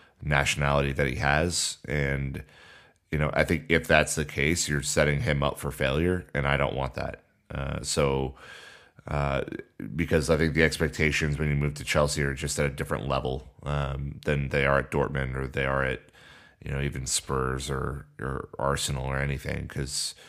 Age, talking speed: 30-49, 185 wpm